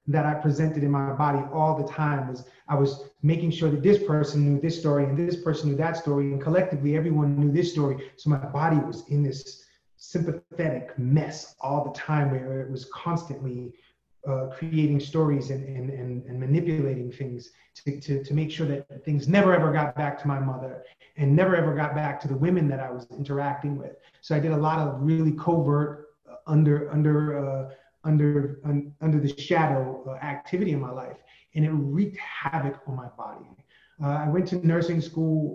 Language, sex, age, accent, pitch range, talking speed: English, male, 30-49, American, 140-160 Hz, 200 wpm